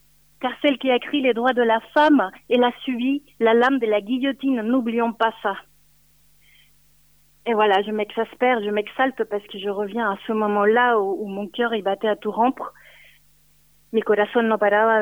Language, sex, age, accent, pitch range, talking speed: French, female, 30-49, French, 205-245 Hz, 190 wpm